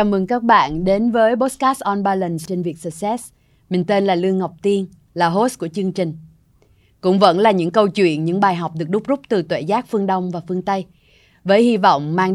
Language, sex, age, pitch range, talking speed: Vietnamese, female, 20-39, 160-195 Hz, 230 wpm